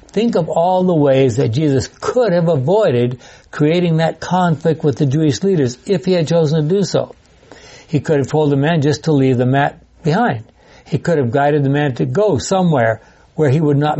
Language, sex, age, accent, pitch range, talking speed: English, male, 60-79, American, 130-175 Hz, 210 wpm